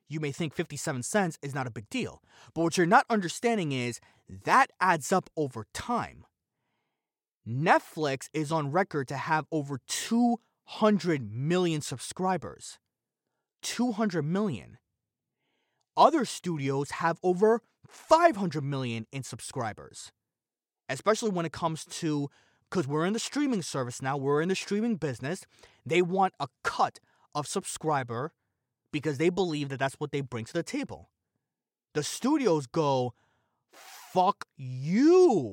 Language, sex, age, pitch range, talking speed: English, male, 20-39, 140-205 Hz, 135 wpm